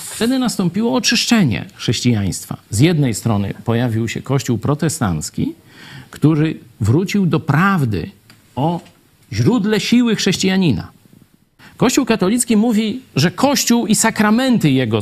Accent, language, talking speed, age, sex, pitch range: native, Polish, 110 wpm, 50-69, male, 135-210 Hz